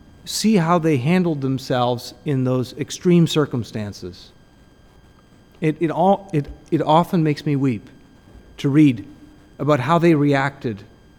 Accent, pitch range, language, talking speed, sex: American, 125-165 Hz, English, 130 wpm, male